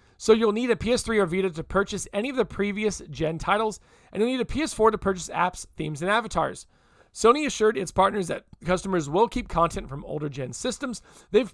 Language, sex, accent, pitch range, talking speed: English, male, American, 165-215 Hz, 210 wpm